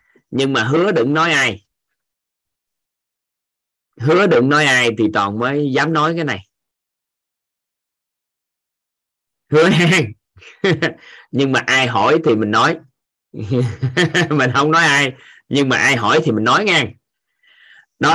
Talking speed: 130 wpm